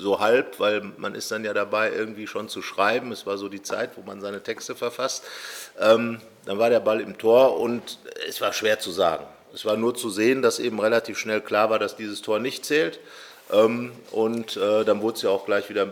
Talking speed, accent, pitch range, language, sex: 235 wpm, German, 105-120 Hz, German, male